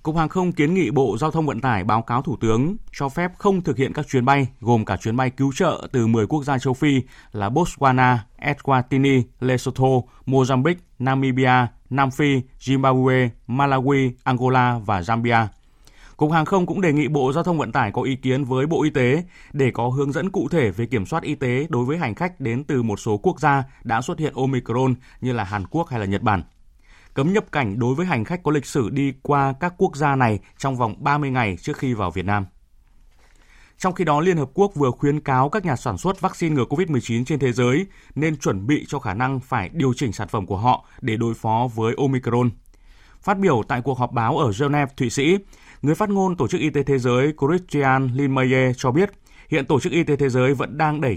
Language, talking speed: Vietnamese, 225 wpm